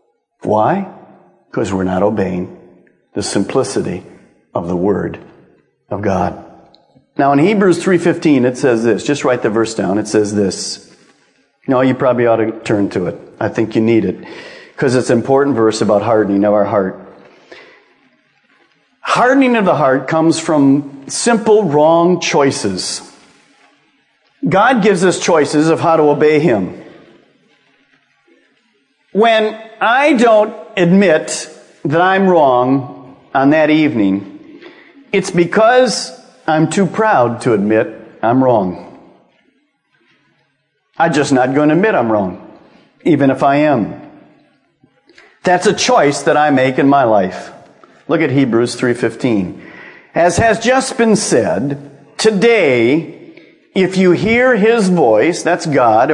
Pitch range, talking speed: 125-195 Hz, 135 wpm